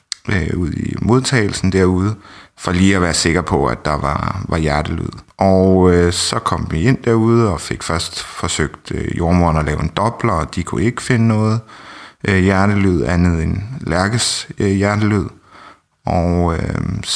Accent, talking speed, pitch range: native, 165 wpm, 85-105 Hz